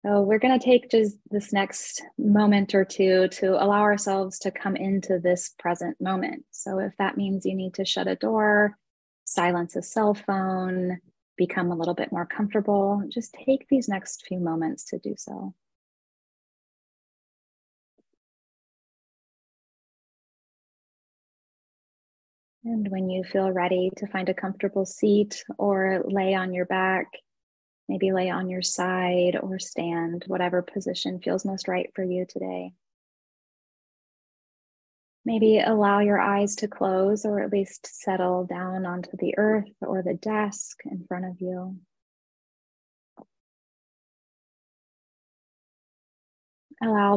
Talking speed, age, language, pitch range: 125 wpm, 20-39, English, 185-205 Hz